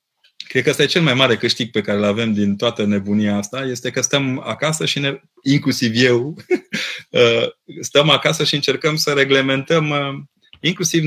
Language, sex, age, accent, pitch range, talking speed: Romanian, male, 30-49, native, 105-140 Hz, 165 wpm